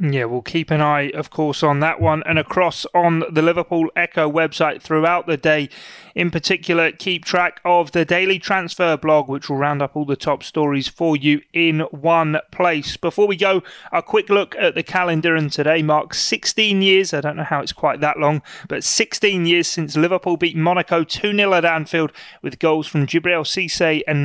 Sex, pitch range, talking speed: male, 145-180 Hz, 200 wpm